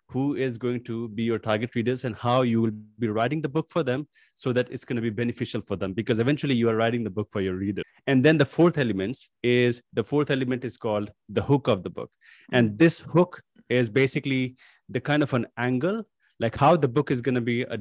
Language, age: English, 30-49